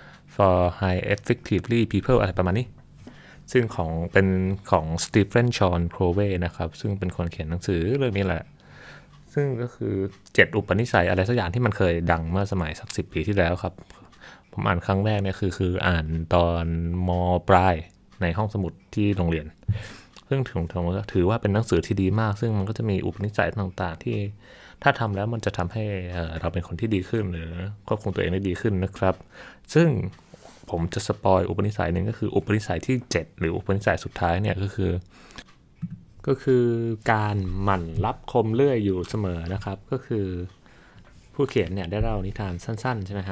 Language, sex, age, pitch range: Thai, male, 20-39, 90-110 Hz